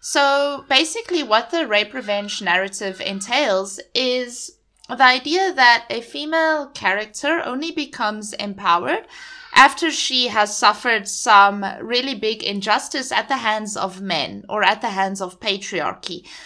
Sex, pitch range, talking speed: female, 195-275 Hz, 135 wpm